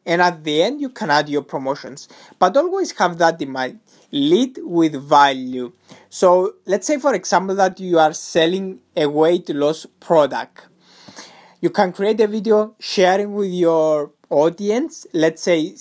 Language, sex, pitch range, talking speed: English, male, 150-210 Hz, 160 wpm